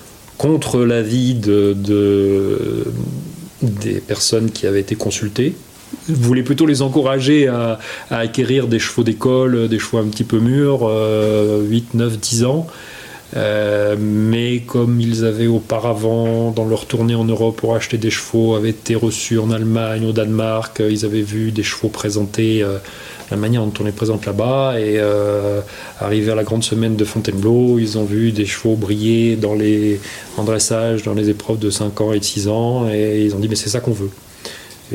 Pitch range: 105-115 Hz